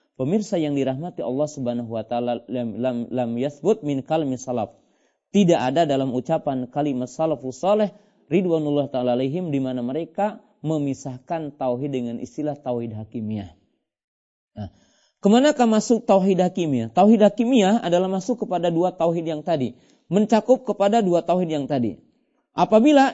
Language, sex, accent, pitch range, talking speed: Indonesian, male, native, 150-210 Hz, 140 wpm